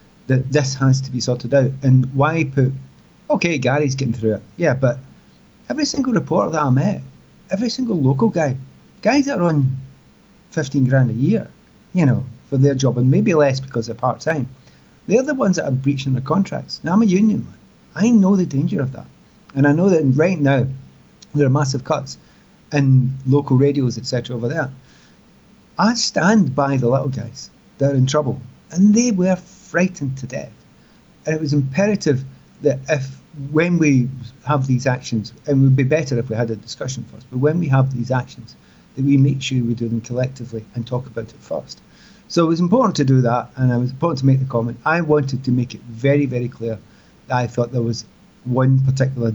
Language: English